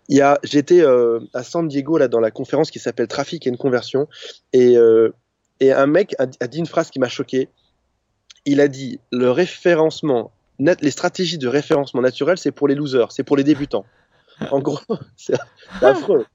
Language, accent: French, French